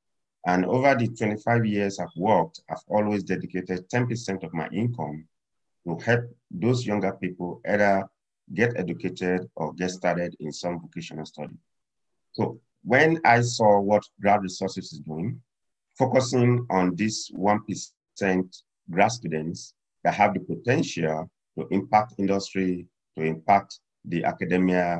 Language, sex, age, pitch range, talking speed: English, male, 50-69, 90-115 Hz, 130 wpm